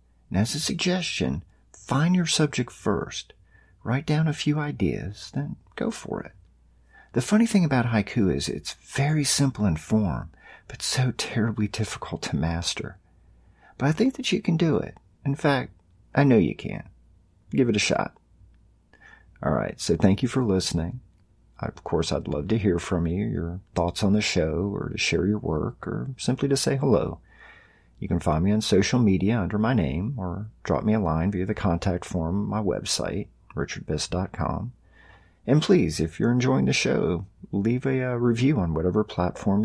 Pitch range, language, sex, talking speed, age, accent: 90-125 Hz, English, male, 180 wpm, 50-69, American